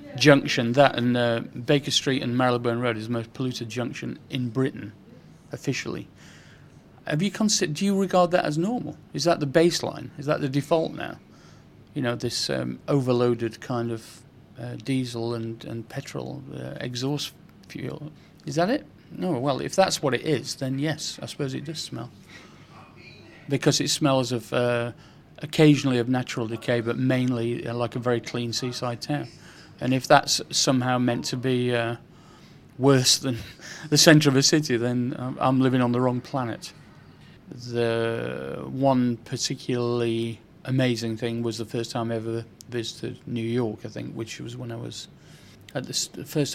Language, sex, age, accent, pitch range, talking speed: English, male, 40-59, British, 115-140 Hz, 170 wpm